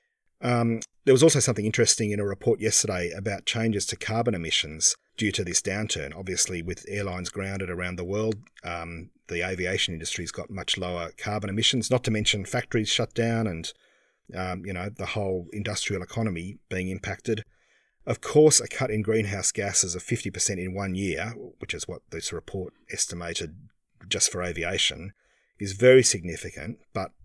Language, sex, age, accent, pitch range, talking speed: English, male, 40-59, Australian, 90-110 Hz, 170 wpm